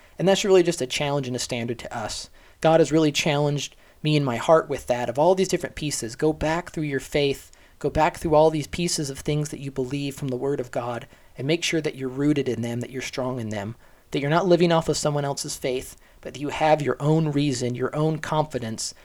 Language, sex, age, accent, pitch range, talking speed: English, male, 30-49, American, 130-155 Hz, 250 wpm